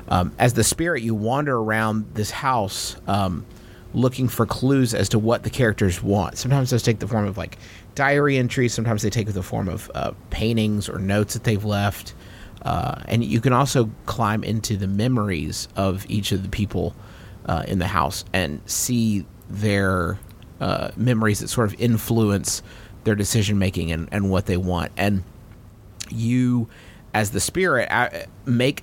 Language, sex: English, male